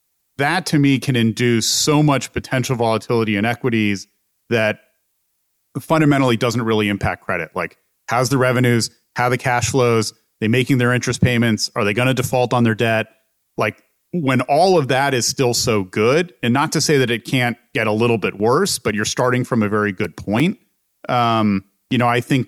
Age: 30-49